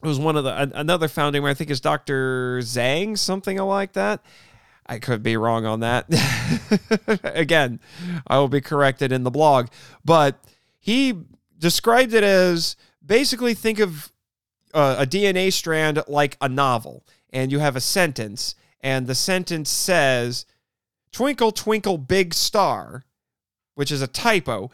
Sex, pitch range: male, 125-170 Hz